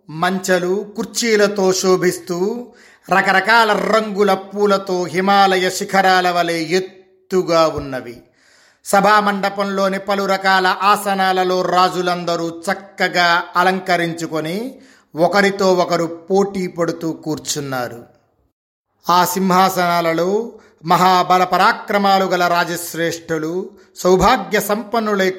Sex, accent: male, native